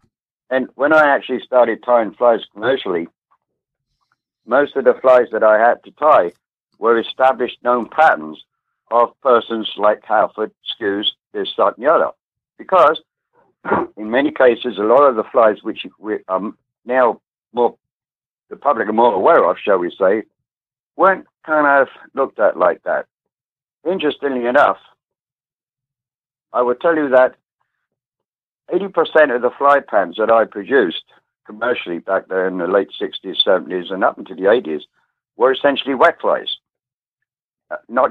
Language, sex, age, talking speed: English, male, 60-79, 150 wpm